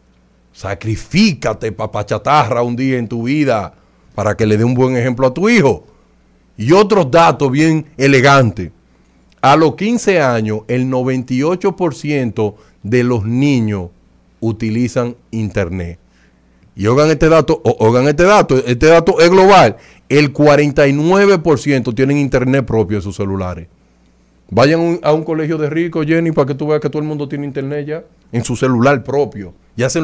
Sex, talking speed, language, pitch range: male, 155 wpm, Spanish, 110-165 Hz